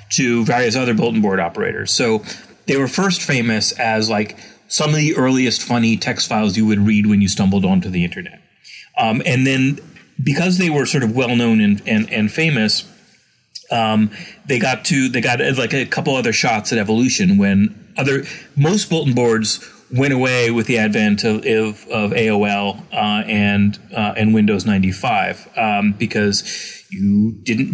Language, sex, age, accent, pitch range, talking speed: English, male, 30-49, American, 105-145 Hz, 175 wpm